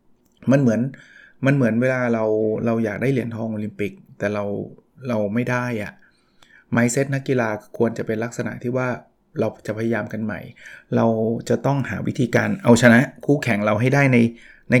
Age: 20-39